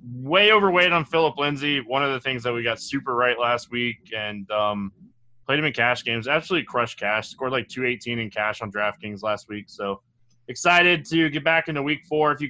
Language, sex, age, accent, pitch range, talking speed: English, male, 20-39, American, 125-170 Hz, 220 wpm